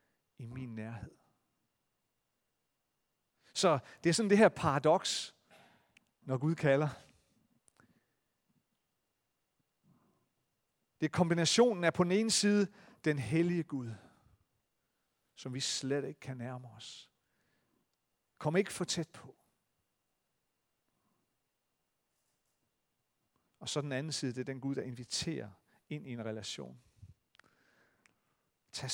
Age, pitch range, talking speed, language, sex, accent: 40-59, 125-165 Hz, 110 wpm, Danish, male, native